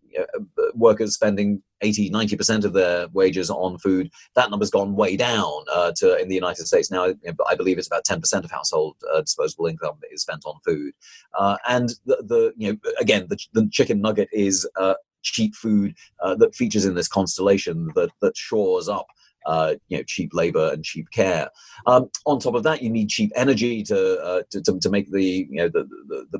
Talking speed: 215 wpm